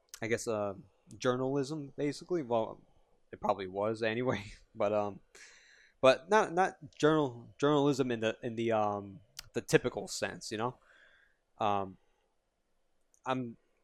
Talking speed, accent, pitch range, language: 125 wpm, American, 100-120 Hz, English